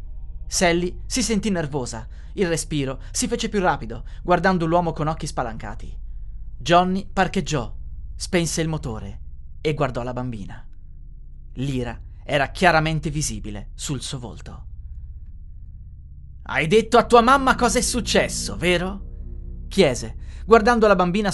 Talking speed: 125 wpm